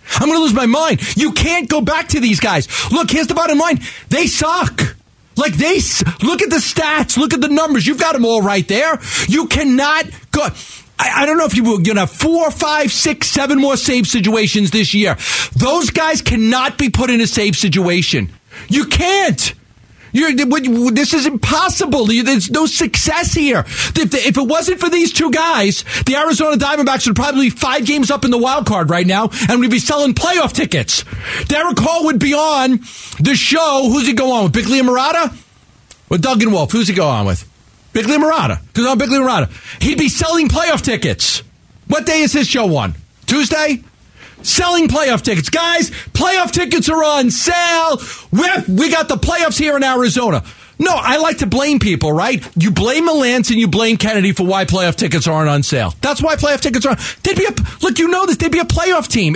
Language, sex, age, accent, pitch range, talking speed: English, male, 40-59, American, 220-310 Hz, 205 wpm